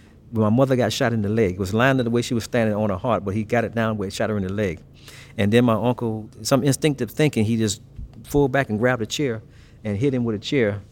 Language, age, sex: English, 50-69, male